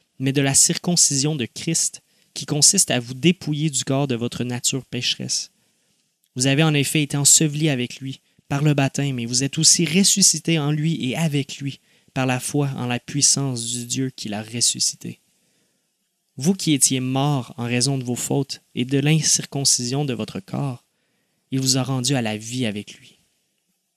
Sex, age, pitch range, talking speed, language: male, 30-49, 125-155 Hz, 185 wpm, French